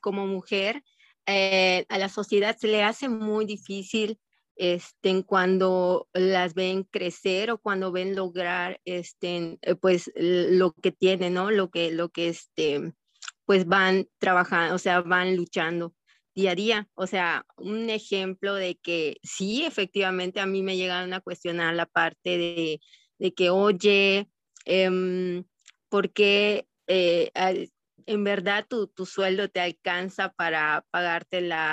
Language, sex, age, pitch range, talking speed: Spanish, female, 20-39, 180-205 Hz, 145 wpm